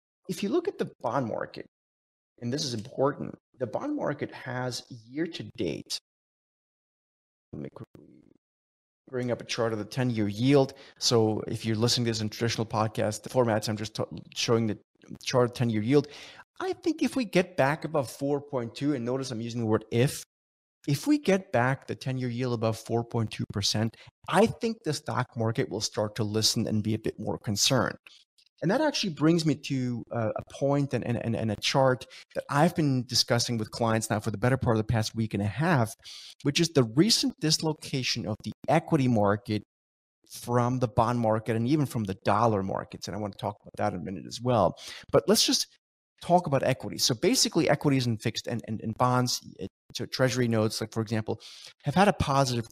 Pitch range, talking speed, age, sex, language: 110-140 Hz, 195 wpm, 30-49, male, English